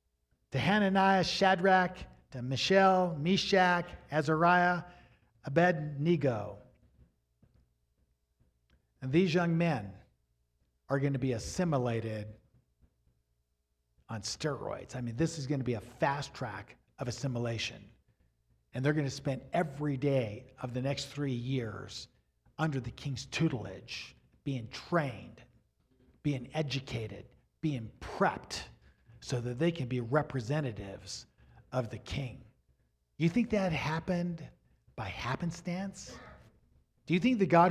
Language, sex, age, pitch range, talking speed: English, male, 50-69, 115-170 Hz, 120 wpm